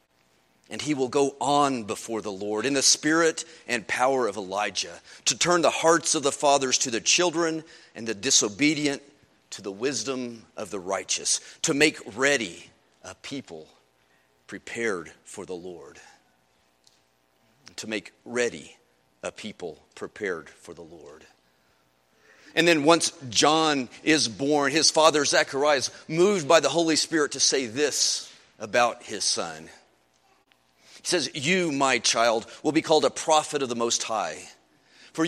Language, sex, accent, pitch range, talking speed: English, male, American, 105-160 Hz, 150 wpm